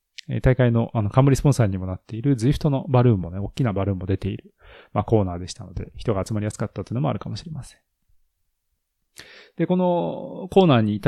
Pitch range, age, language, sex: 95-135 Hz, 20-39, Japanese, male